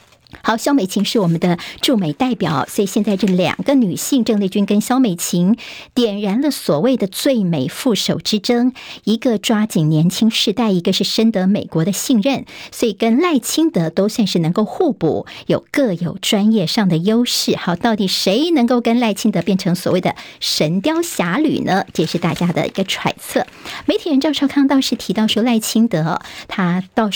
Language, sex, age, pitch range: Chinese, male, 50-69, 185-240 Hz